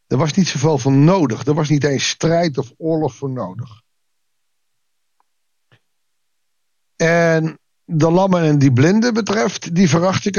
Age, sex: 50-69, male